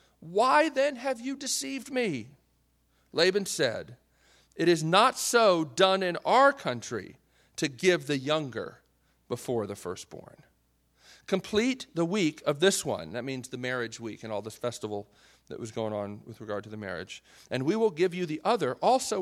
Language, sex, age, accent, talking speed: English, male, 40-59, American, 170 wpm